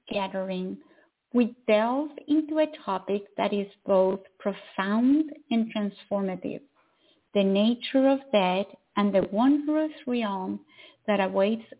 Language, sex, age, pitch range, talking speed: English, female, 50-69, 205-285 Hz, 110 wpm